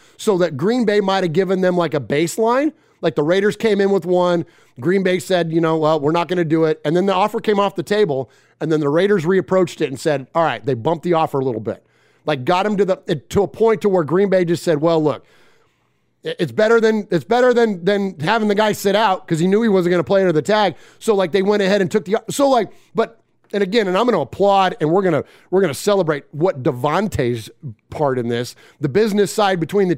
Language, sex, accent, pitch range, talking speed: English, male, American, 155-200 Hz, 260 wpm